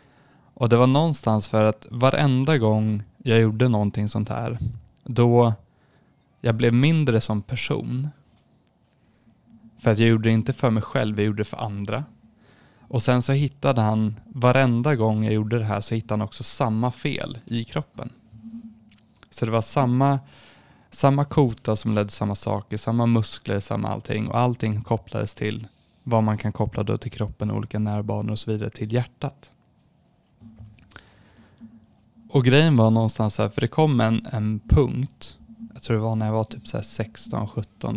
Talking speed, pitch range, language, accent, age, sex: 165 wpm, 110-125 Hz, Swedish, native, 20-39, male